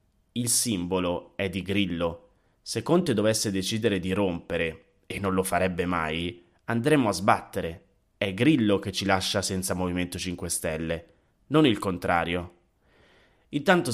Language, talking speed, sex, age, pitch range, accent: Italian, 140 wpm, male, 30-49, 95-125 Hz, native